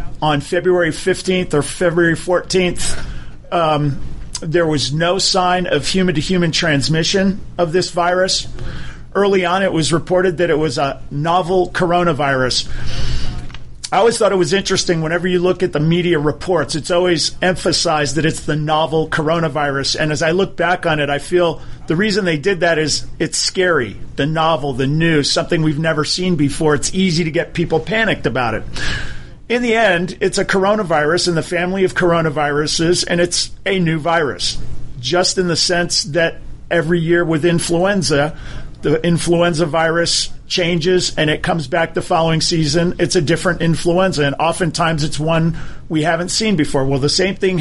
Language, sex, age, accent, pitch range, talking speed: English, male, 40-59, American, 150-180 Hz, 170 wpm